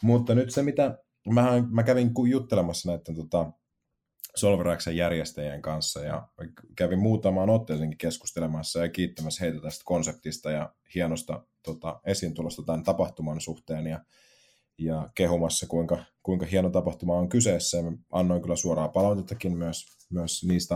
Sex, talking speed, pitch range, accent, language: male, 130 wpm, 80-105 Hz, native, Finnish